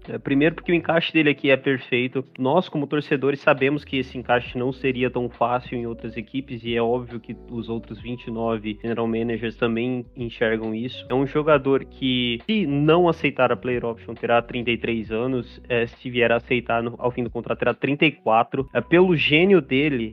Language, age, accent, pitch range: Portuguese, 20-39, Brazilian, 120-140 Hz